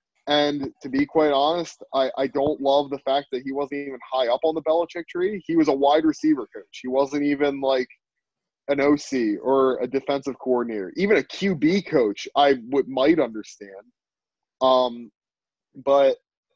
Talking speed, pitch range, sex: 170 wpm, 135-165 Hz, male